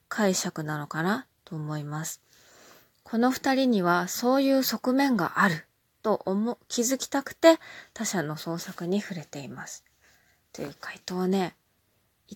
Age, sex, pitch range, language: 20-39, female, 175-225 Hz, Japanese